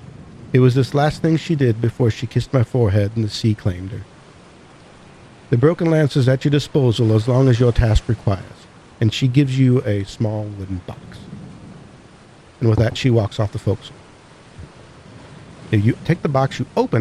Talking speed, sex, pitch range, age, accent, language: 185 wpm, male, 115-150 Hz, 50-69, American, English